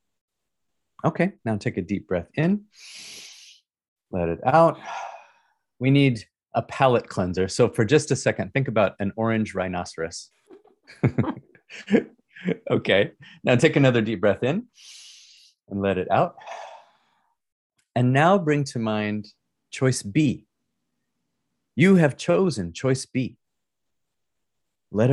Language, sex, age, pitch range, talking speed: English, male, 30-49, 100-135 Hz, 115 wpm